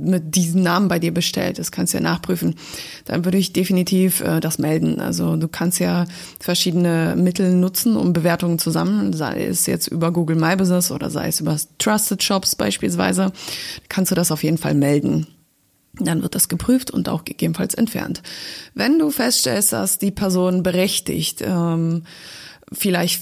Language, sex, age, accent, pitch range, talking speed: German, female, 20-39, German, 170-200 Hz, 175 wpm